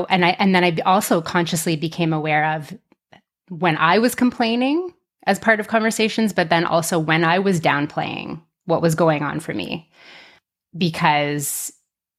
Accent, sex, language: American, female, English